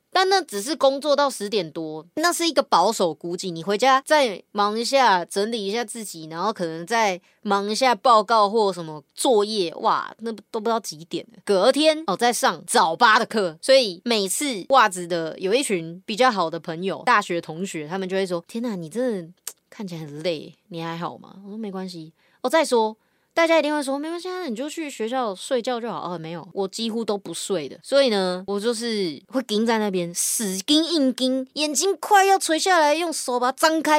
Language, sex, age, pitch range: Chinese, female, 20-39, 185-265 Hz